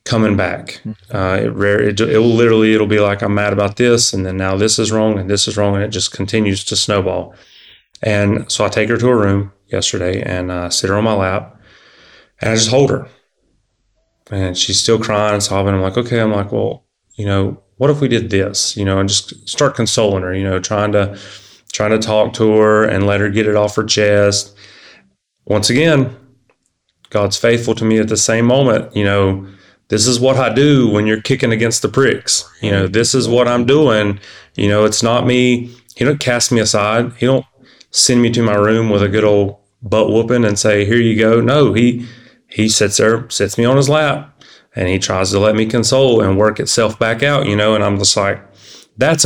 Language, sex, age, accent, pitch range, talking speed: English, male, 30-49, American, 100-115 Hz, 225 wpm